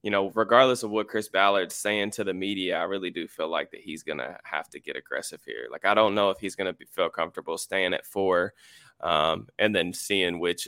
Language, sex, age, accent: English, male, 20-39, American